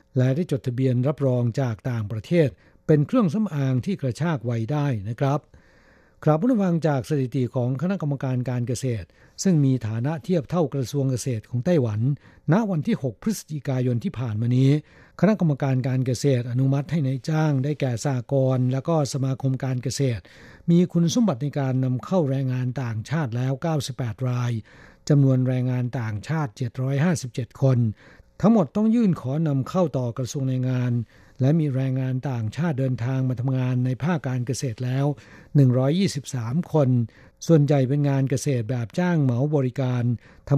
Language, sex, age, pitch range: Thai, male, 60-79, 125-150 Hz